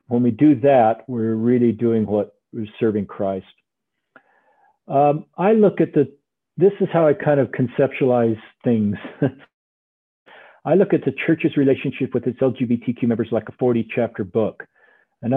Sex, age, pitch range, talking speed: male, 50-69, 120-145 Hz, 155 wpm